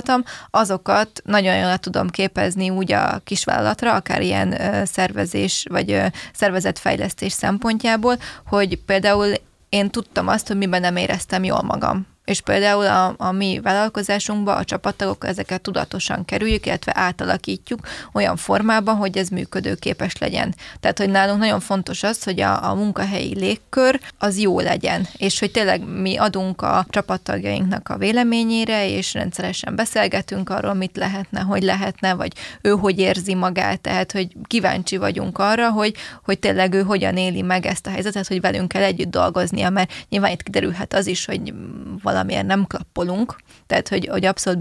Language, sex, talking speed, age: Hungarian, female, 155 wpm, 20-39